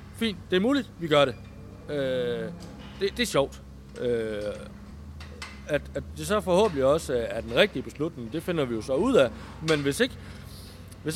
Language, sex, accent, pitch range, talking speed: Danish, male, native, 115-165 Hz, 190 wpm